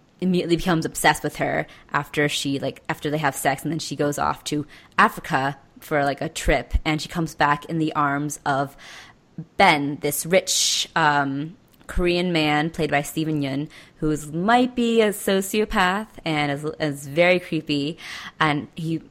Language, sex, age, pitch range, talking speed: English, female, 20-39, 145-165 Hz, 165 wpm